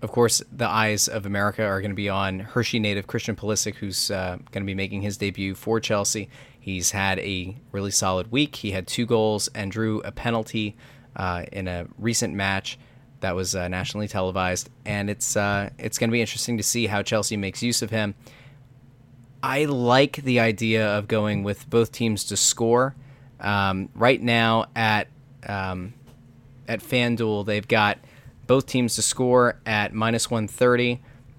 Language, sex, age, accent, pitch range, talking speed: English, male, 20-39, American, 100-120 Hz, 175 wpm